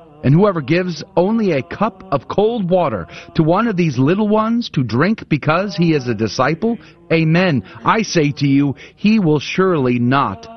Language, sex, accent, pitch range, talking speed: English, male, American, 120-175 Hz, 175 wpm